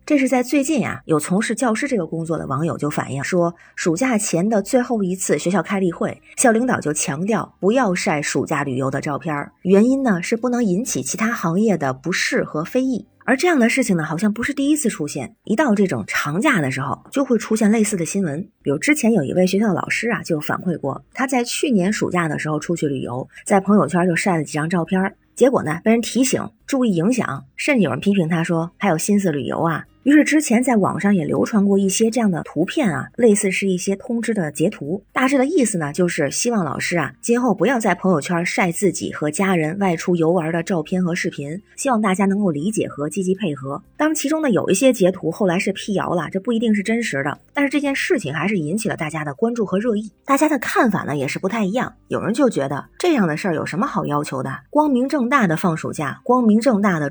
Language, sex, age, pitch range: Chinese, female, 20-39, 165-235 Hz